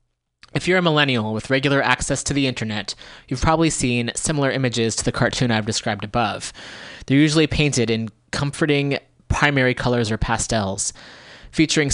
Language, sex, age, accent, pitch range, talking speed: English, male, 30-49, American, 110-140 Hz, 155 wpm